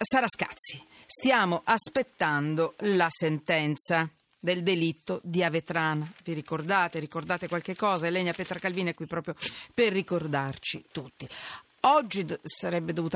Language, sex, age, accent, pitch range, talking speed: Italian, female, 40-59, native, 145-185 Hz, 130 wpm